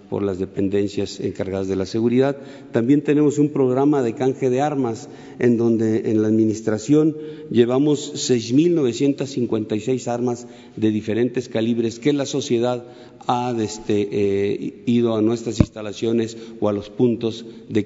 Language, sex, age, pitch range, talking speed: Spanish, male, 50-69, 105-125 Hz, 140 wpm